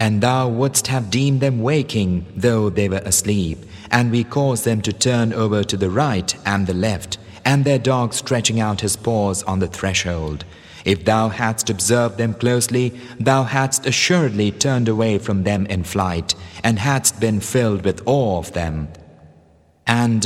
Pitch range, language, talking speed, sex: 95-125 Hz, English, 170 wpm, male